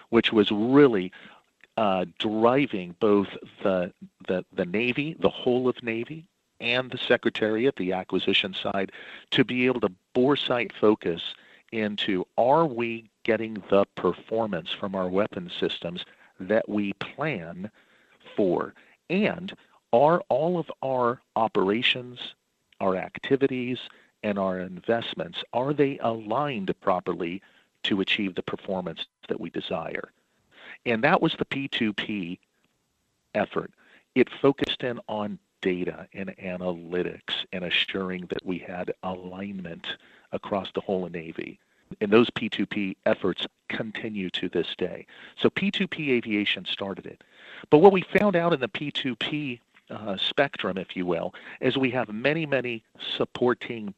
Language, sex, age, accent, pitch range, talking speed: English, male, 50-69, American, 100-135 Hz, 130 wpm